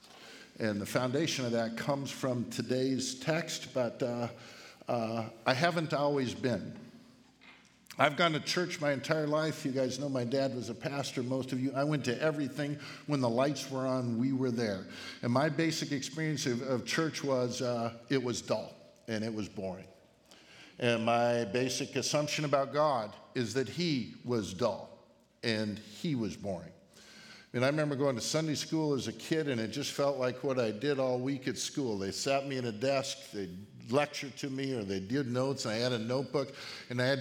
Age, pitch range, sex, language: 50-69, 120-145 Hz, male, English